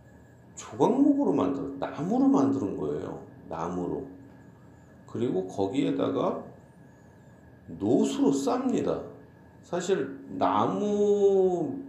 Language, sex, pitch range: Korean, male, 100-140 Hz